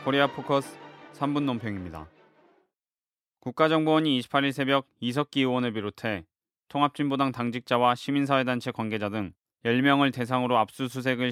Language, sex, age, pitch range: Korean, male, 20-39, 115-135 Hz